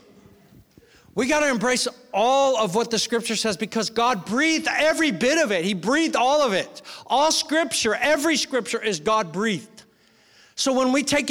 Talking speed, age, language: 175 wpm, 50-69, English